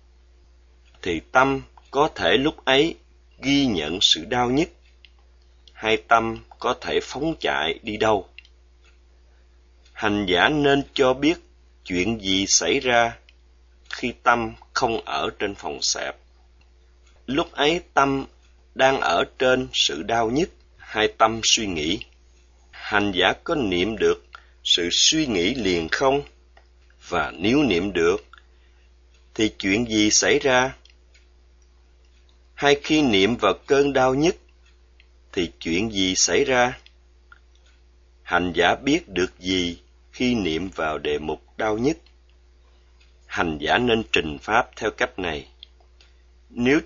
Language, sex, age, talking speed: Vietnamese, male, 30-49, 130 wpm